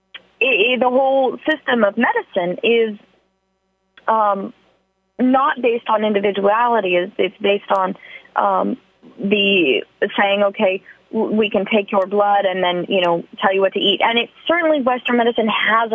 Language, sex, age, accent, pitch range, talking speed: English, female, 20-39, American, 205-275 Hz, 155 wpm